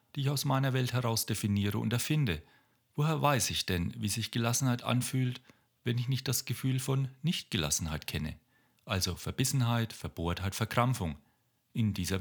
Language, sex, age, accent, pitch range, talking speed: German, male, 40-59, German, 95-125 Hz, 150 wpm